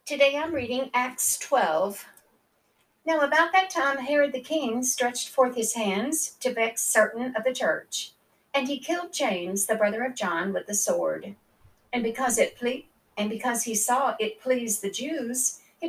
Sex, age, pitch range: female, 60-79, 205-275 Hz